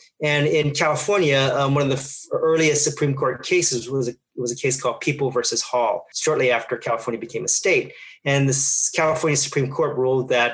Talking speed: 195 wpm